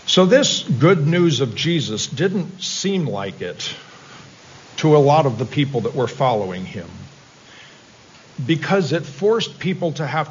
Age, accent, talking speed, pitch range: 50-69, American, 150 wpm, 135-170 Hz